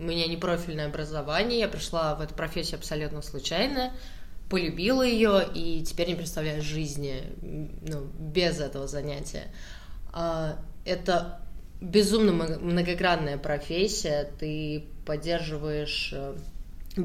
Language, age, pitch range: Russian, 20-39, 150-175 Hz